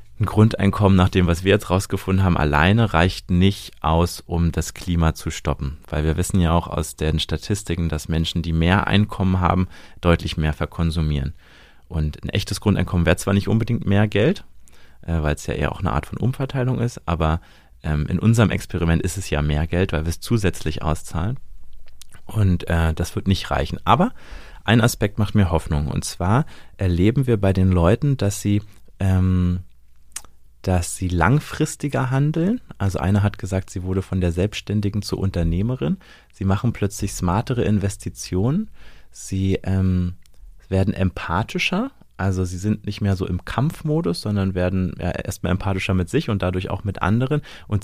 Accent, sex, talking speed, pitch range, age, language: German, male, 170 wpm, 85-105 Hz, 30-49, German